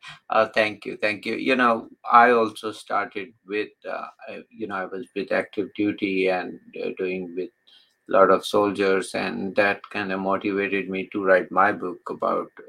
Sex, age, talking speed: male, 50-69, 180 wpm